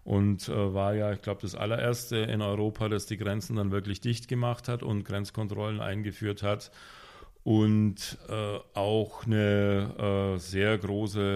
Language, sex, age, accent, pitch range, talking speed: German, male, 40-59, German, 100-115 Hz, 155 wpm